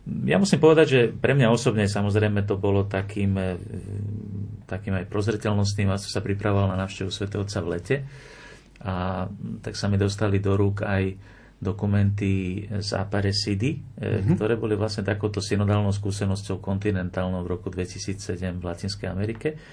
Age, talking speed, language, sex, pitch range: 40-59, 145 wpm, Slovak, male, 95-110 Hz